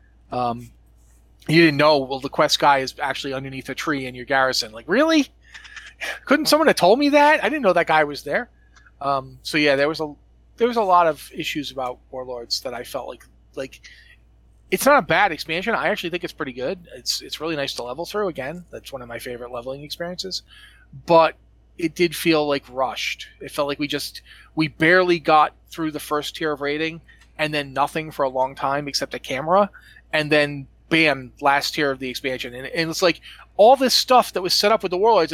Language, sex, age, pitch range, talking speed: English, male, 30-49, 130-170 Hz, 215 wpm